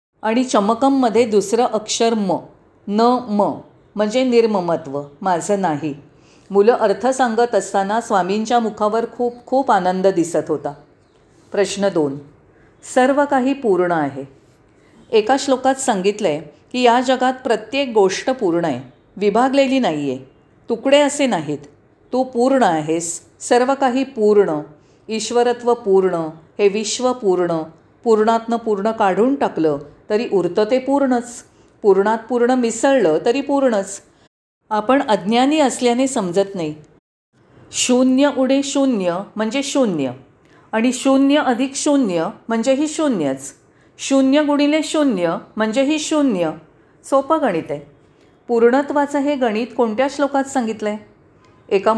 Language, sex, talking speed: Marathi, female, 115 wpm